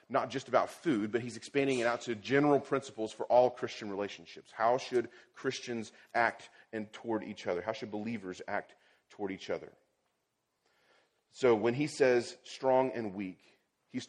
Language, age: English, 30-49